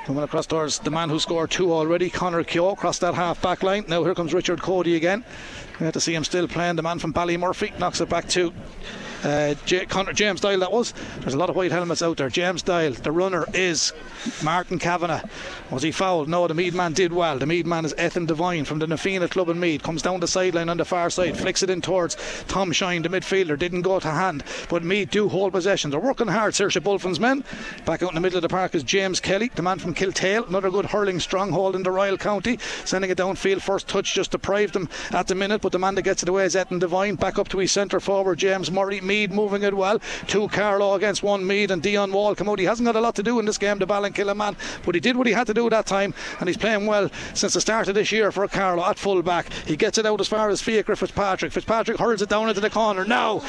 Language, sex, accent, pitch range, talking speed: English, male, Irish, 175-210 Hz, 265 wpm